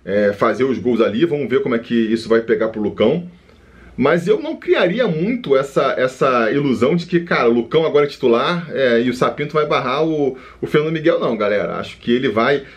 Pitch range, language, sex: 115-175 Hz, Portuguese, male